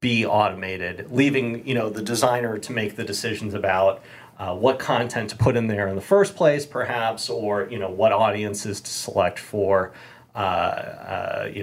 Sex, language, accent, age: male, English, American, 30-49